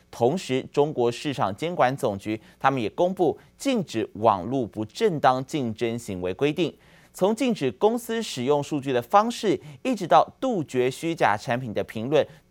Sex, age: male, 30-49